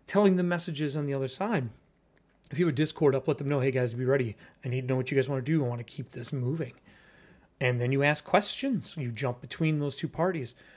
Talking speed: 260 wpm